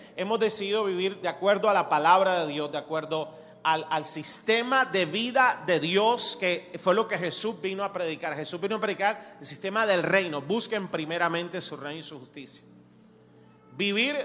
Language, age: Spanish, 40-59